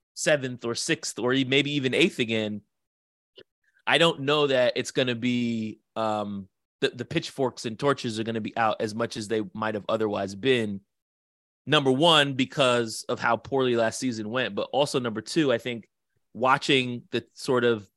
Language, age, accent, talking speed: English, 30-49, American, 180 wpm